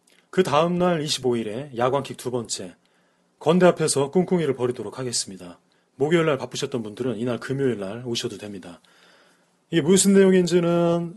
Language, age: Korean, 30-49